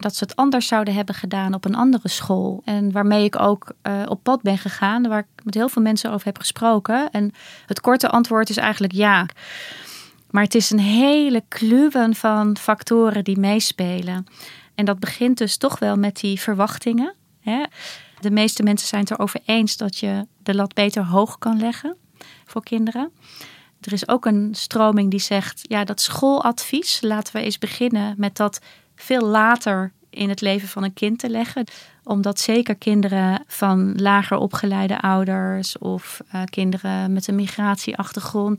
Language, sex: Dutch, female